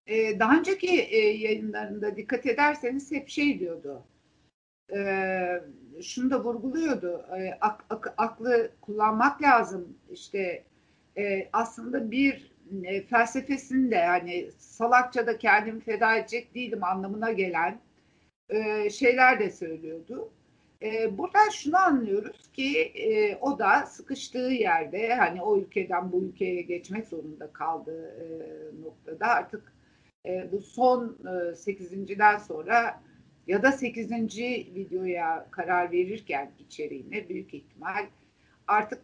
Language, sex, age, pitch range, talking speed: Turkish, female, 60-79, 185-260 Hz, 95 wpm